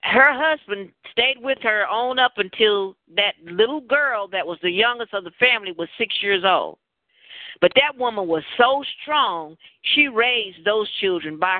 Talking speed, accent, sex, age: 170 wpm, American, female, 50-69